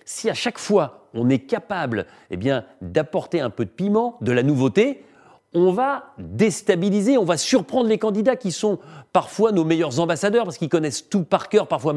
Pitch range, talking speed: 130-200 Hz, 190 wpm